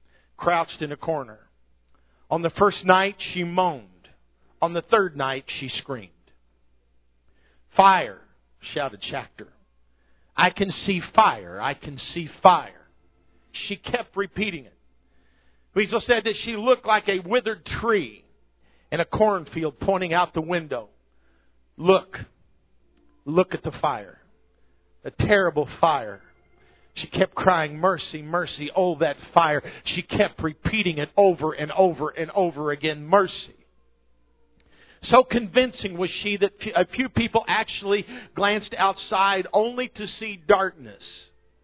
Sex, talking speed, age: male, 130 wpm, 50-69